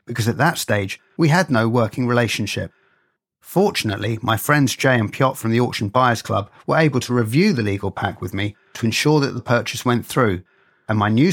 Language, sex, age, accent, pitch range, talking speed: English, male, 40-59, British, 105-135 Hz, 205 wpm